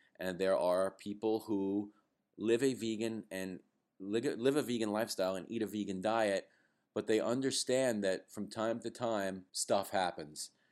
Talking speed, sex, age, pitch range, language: 160 wpm, male, 40-59, 95-120 Hz, English